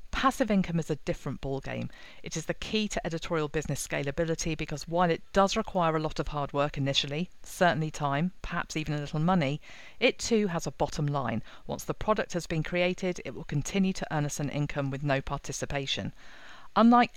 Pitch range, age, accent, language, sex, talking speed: 140-180 Hz, 40-59, British, English, female, 195 wpm